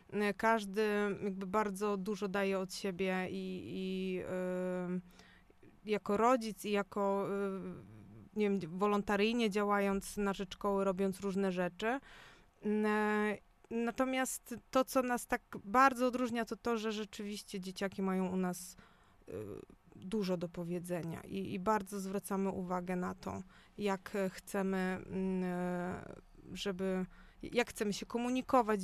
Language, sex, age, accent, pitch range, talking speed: Polish, female, 20-39, native, 190-220 Hz, 110 wpm